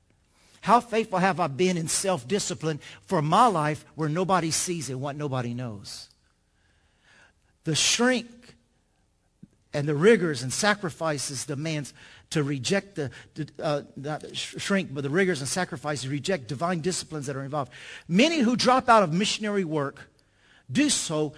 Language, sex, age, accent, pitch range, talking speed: English, male, 50-69, American, 140-195 Hz, 145 wpm